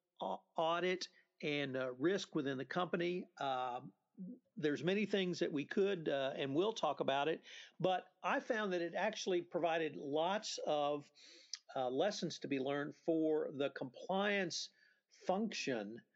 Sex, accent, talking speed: male, American, 135 wpm